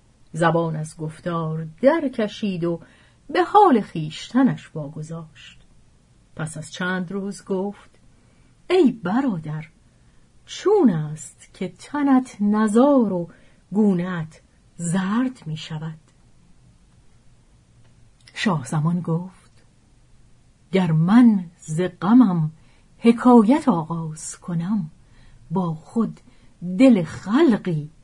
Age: 40-59